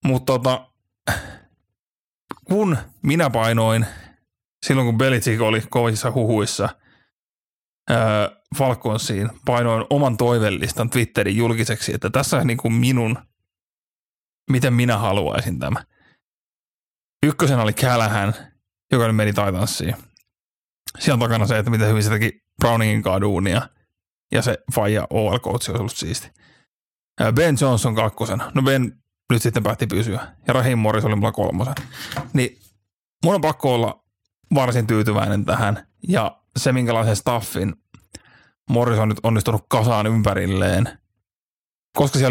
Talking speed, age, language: 120 wpm, 30-49, Finnish